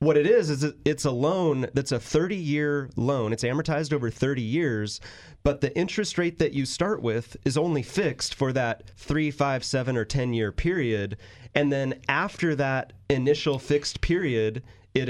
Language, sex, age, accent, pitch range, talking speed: English, male, 30-49, American, 115-145 Hz, 175 wpm